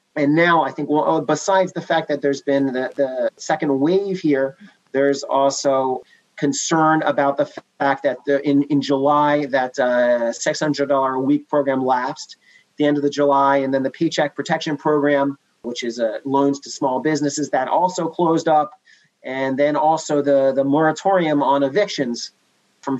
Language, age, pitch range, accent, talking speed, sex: English, 30-49, 140-165 Hz, American, 165 wpm, male